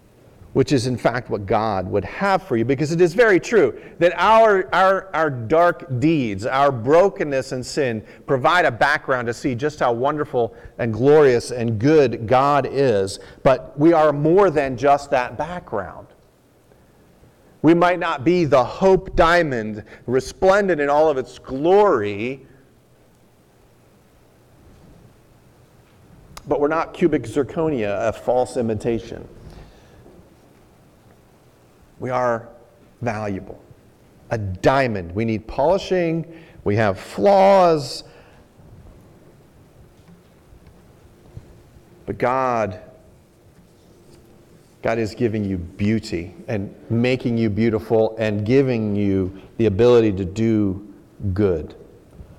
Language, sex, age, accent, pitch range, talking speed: English, male, 40-59, American, 110-155 Hz, 110 wpm